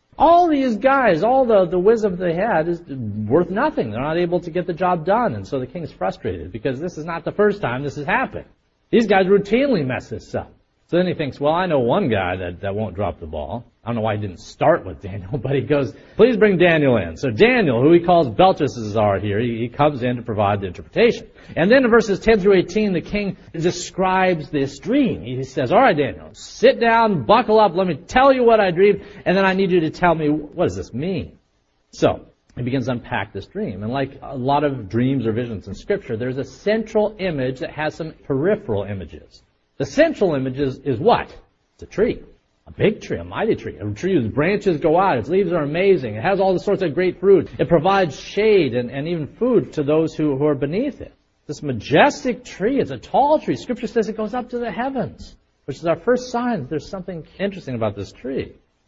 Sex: male